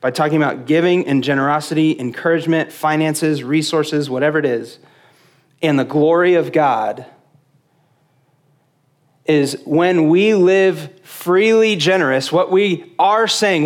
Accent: American